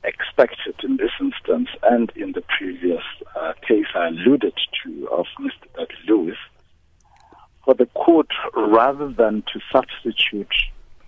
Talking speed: 125 wpm